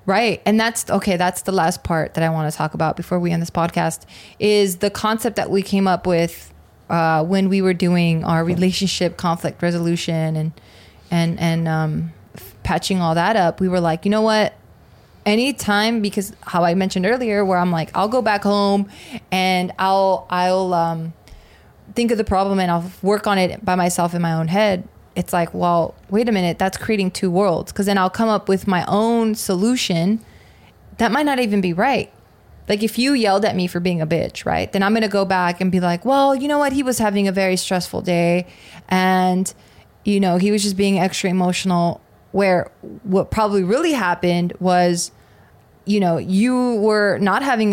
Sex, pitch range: female, 170-205 Hz